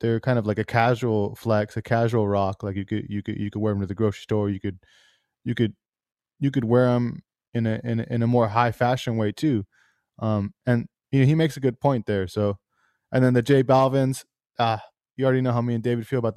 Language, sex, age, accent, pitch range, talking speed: English, male, 20-39, American, 105-125 Hz, 255 wpm